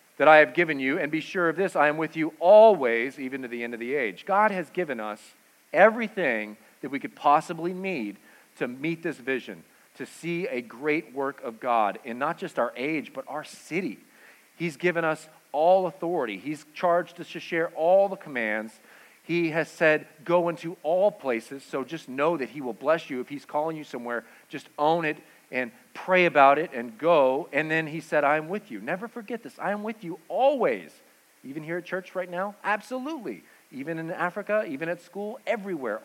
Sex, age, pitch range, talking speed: male, 40-59, 135-180 Hz, 205 wpm